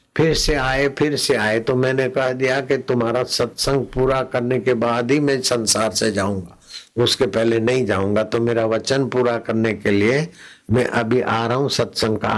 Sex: male